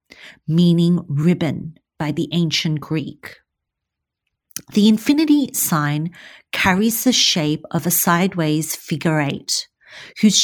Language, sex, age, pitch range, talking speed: English, female, 40-59, 155-205 Hz, 105 wpm